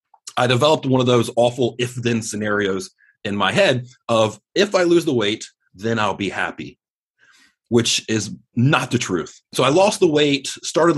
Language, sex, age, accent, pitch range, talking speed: English, male, 30-49, American, 115-140 Hz, 175 wpm